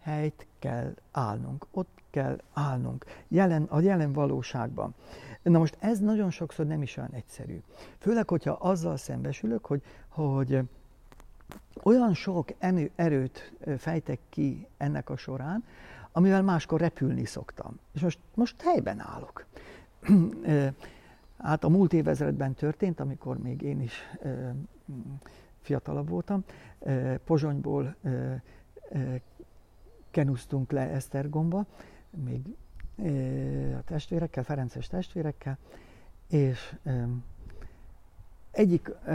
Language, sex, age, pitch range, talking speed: Hungarian, male, 60-79, 135-175 Hz, 100 wpm